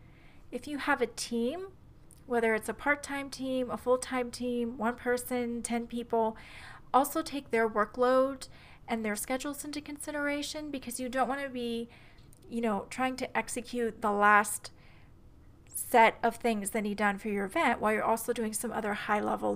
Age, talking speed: 30-49, 170 wpm